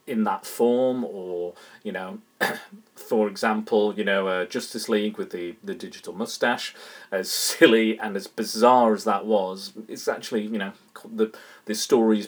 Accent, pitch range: British, 100-145 Hz